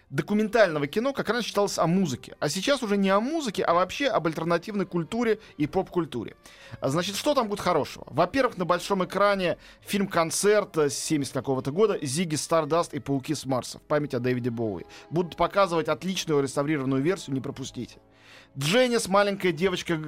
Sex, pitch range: male, 140-185 Hz